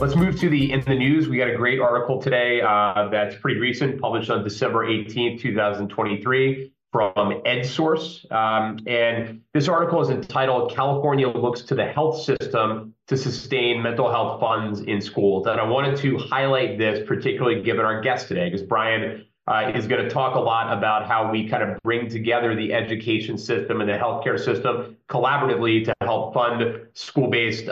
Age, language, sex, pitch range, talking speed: 30-49, English, male, 110-135 Hz, 180 wpm